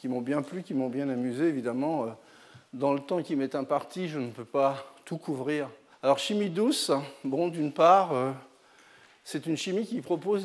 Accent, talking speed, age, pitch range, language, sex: French, 185 wpm, 50-69, 135-180 Hz, French, male